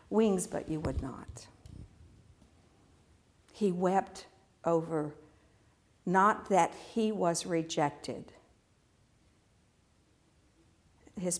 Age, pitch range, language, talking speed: 60-79, 105-175 Hz, English, 75 wpm